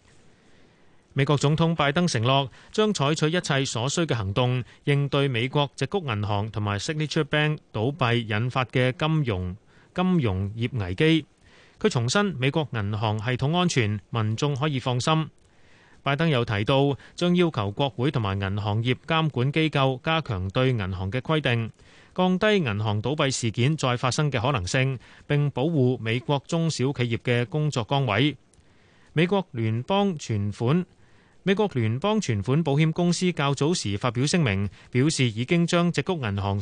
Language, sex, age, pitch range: Chinese, male, 30-49, 110-155 Hz